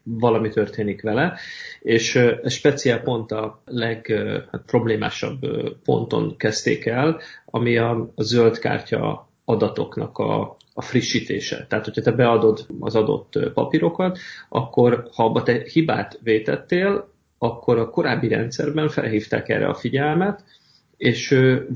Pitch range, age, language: 110-145 Hz, 30-49, Hungarian